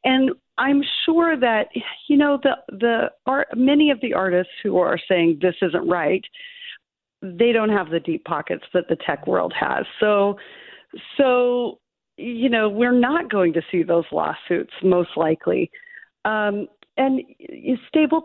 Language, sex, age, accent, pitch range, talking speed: English, female, 40-59, American, 185-255 Hz, 150 wpm